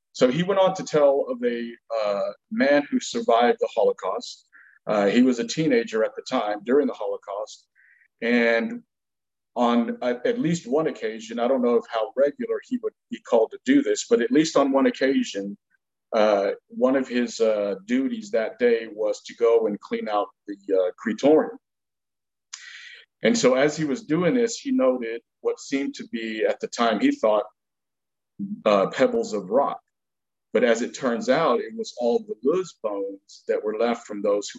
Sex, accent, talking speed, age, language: male, American, 185 wpm, 50-69, English